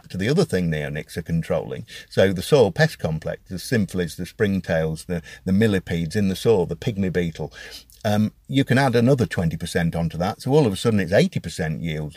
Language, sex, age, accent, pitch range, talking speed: English, male, 50-69, British, 90-130 Hz, 200 wpm